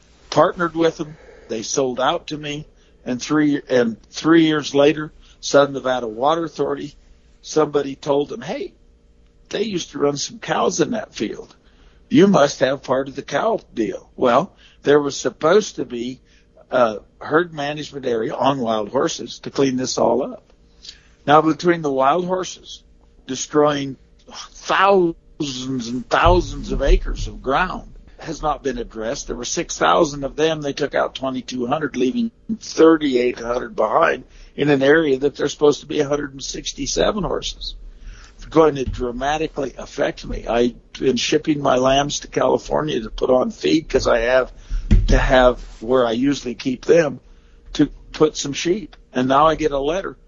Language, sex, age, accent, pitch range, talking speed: English, male, 60-79, American, 120-150 Hz, 160 wpm